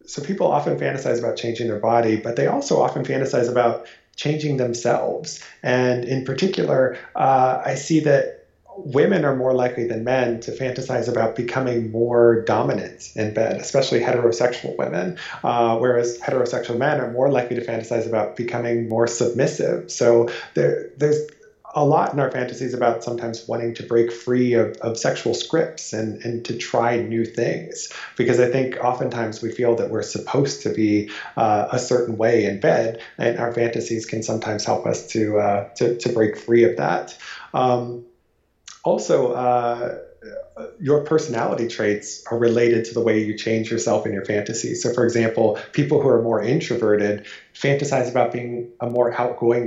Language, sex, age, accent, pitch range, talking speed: English, male, 30-49, American, 115-125 Hz, 170 wpm